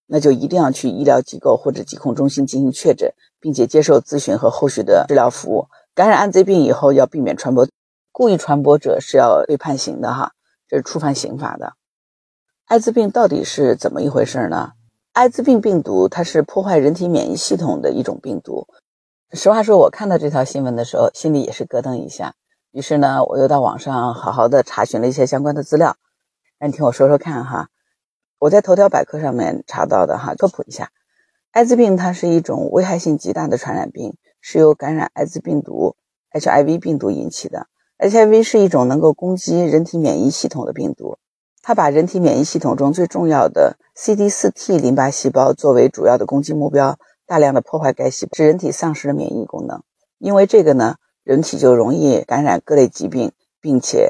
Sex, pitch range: female, 140-190 Hz